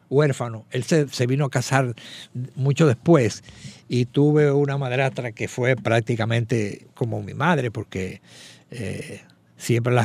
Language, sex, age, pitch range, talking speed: Spanish, male, 60-79, 115-140 Hz, 130 wpm